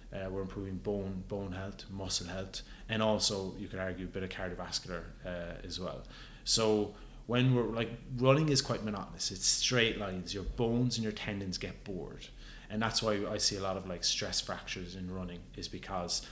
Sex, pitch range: male, 95-110 Hz